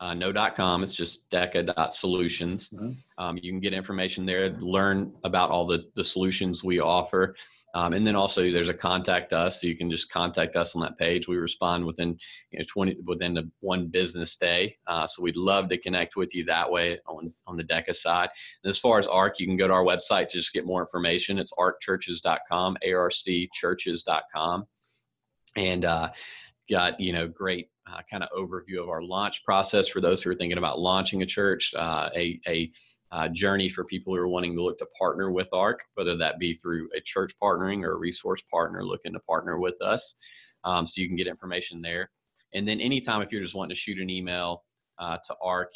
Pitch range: 85-95 Hz